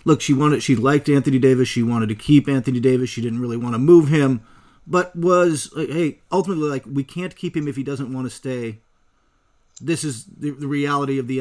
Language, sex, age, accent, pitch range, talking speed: English, male, 40-59, American, 135-175 Hz, 225 wpm